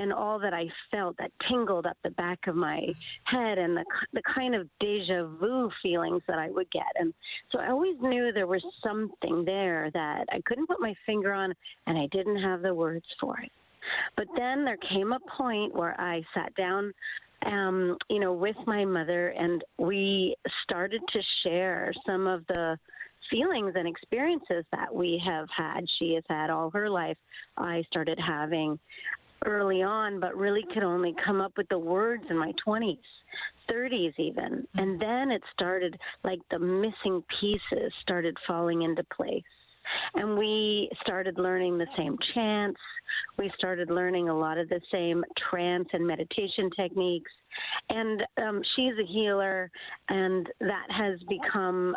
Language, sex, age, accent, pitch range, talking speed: English, female, 40-59, American, 175-210 Hz, 165 wpm